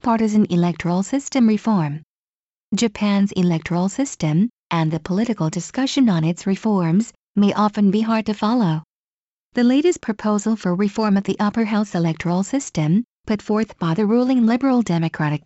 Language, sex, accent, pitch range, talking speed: English, female, American, 180-230 Hz, 150 wpm